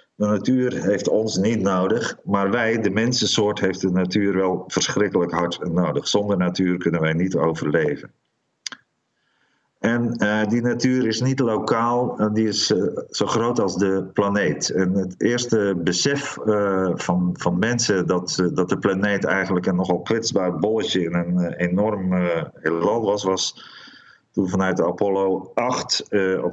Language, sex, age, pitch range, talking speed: Dutch, male, 50-69, 90-110 Hz, 160 wpm